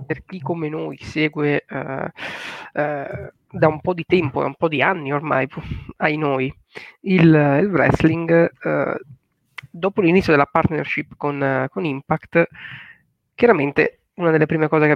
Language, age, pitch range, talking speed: Italian, 20-39, 140-175 Hz, 160 wpm